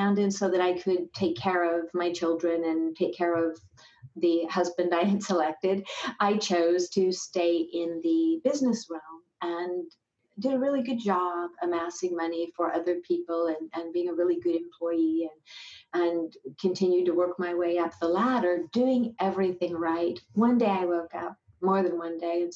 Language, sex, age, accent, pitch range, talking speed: English, female, 50-69, American, 170-200 Hz, 180 wpm